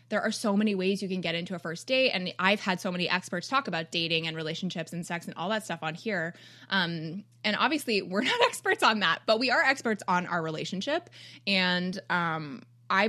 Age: 20-39